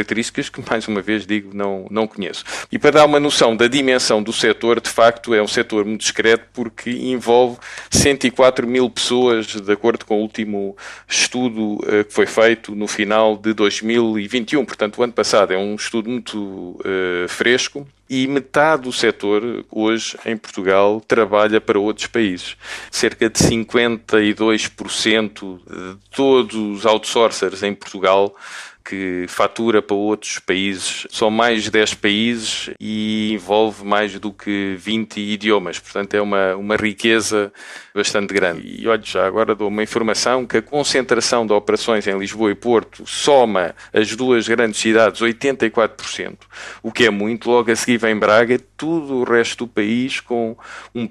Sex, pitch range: male, 105-120 Hz